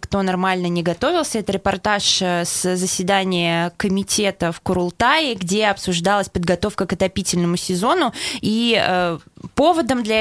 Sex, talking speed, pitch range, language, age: female, 120 wpm, 175-210 Hz, Russian, 20-39